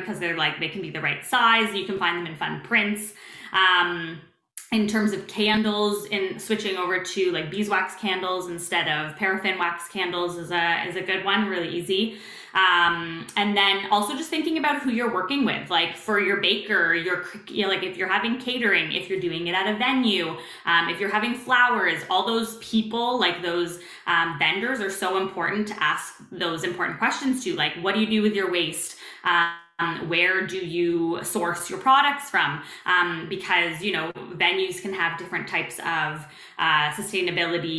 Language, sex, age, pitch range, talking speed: English, female, 20-39, 170-205 Hz, 190 wpm